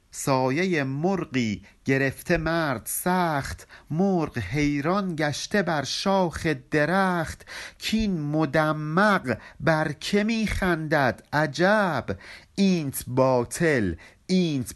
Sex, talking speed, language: male, 80 wpm, Persian